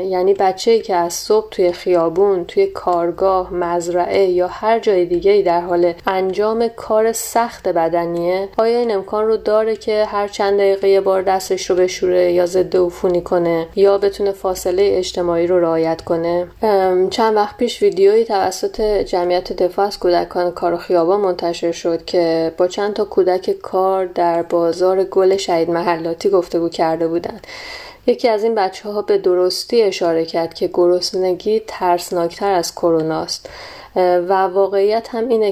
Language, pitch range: Persian, 175-200 Hz